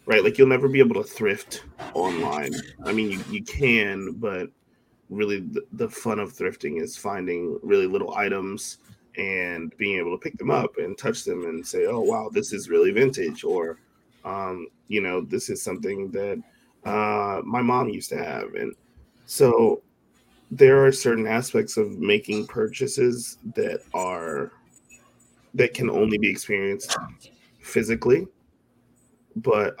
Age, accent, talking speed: 20-39, American, 155 wpm